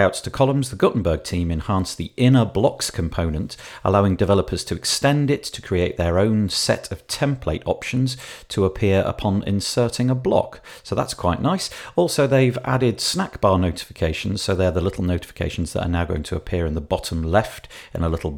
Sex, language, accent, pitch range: male, English, British, 85-120 Hz